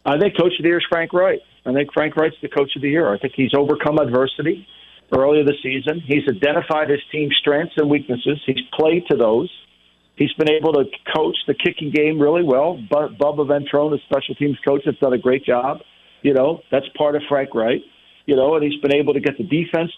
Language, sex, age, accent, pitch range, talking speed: English, male, 50-69, American, 135-160 Hz, 225 wpm